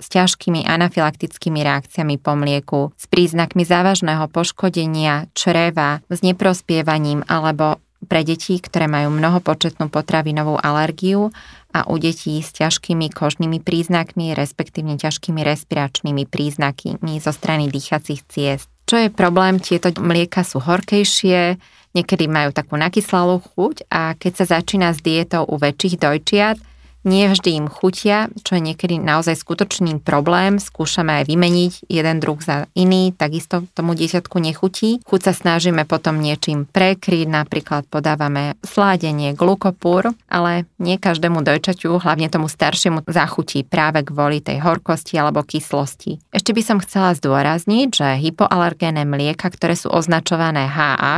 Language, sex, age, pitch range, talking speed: Slovak, female, 20-39, 150-185 Hz, 135 wpm